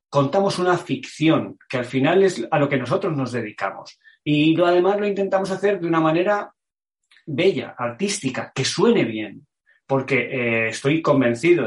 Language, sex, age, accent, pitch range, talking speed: Spanish, male, 30-49, Spanish, 130-170 Hz, 155 wpm